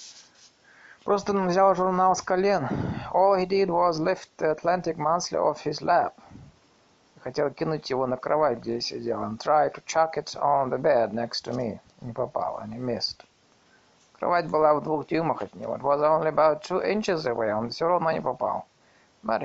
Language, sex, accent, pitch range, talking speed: Russian, male, native, 125-175 Hz, 110 wpm